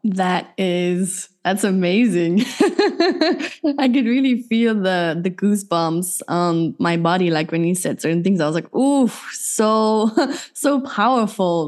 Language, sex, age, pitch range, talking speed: Dutch, female, 20-39, 180-215 Hz, 140 wpm